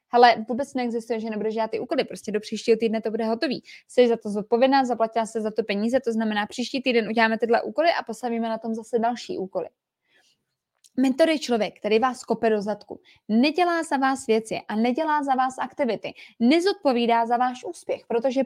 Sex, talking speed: female, 195 wpm